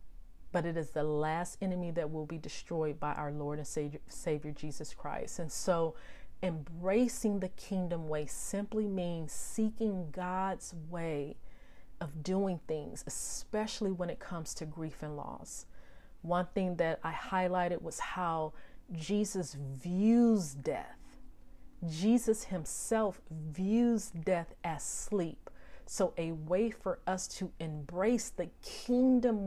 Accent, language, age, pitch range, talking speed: American, English, 40-59, 155-190 Hz, 130 wpm